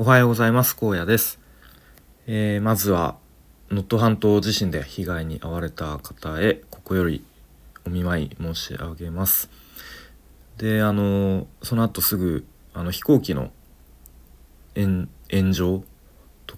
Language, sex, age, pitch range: Japanese, male, 40-59, 70-100 Hz